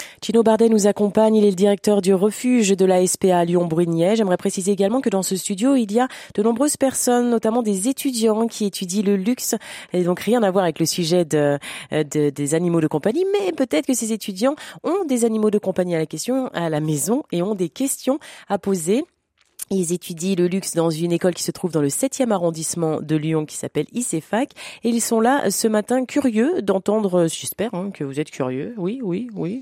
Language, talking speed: French, 200 wpm